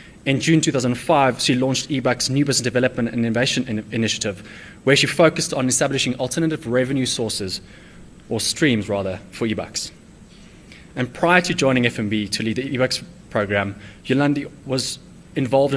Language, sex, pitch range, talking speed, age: English, male, 110-135 Hz, 145 wpm, 20-39